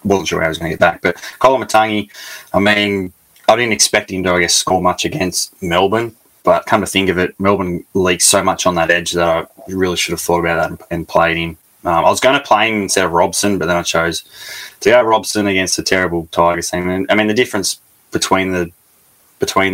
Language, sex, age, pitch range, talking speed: English, male, 20-39, 85-95 Hz, 250 wpm